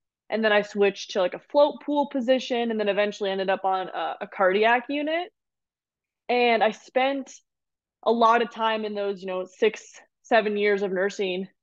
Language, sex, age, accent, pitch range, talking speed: English, female, 20-39, American, 200-250 Hz, 185 wpm